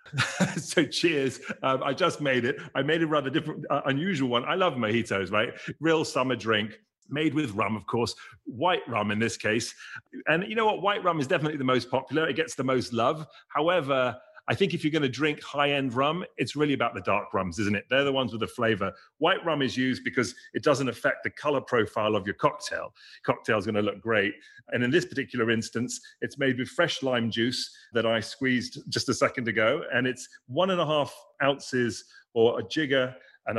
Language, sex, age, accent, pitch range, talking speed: English, male, 40-59, British, 115-150 Hz, 215 wpm